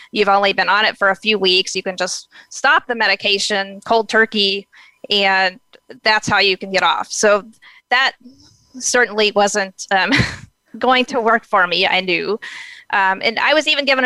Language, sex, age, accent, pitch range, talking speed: English, female, 30-49, American, 195-225 Hz, 180 wpm